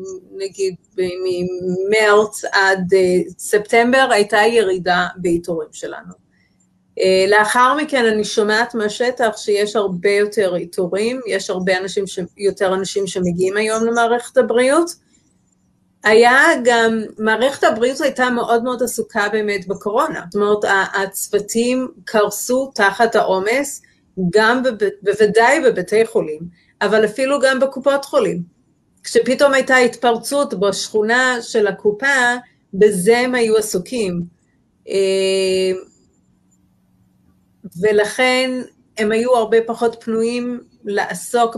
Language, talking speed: Hebrew, 100 wpm